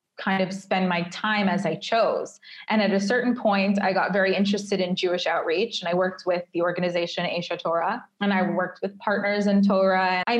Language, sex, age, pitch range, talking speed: English, female, 20-39, 180-210 Hz, 210 wpm